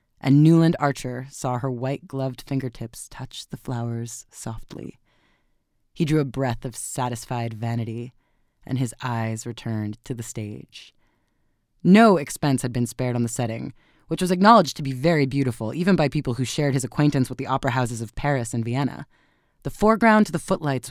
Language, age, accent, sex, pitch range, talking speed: English, 20-39, American, female, 120-150 Hz, 170 wpm